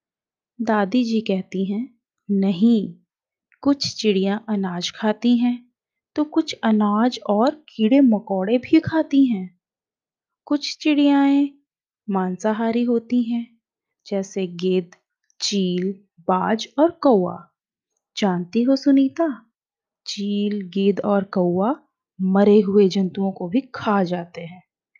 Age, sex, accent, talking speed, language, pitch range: 20-39, female, native, 105 wpm, Hindi, 195-265 Hz